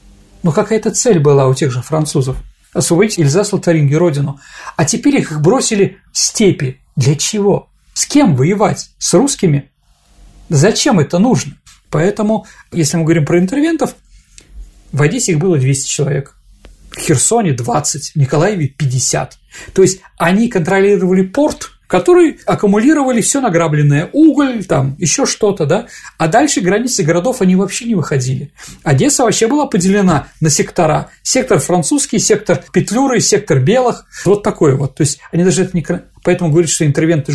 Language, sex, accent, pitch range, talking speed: Russian, male, native, 145-210 Hz, 150 wpm